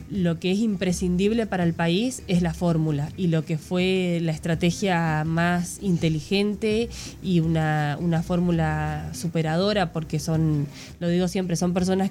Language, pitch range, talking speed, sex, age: Spanish, 155-185 Hz, 150 wpm, female, 20-39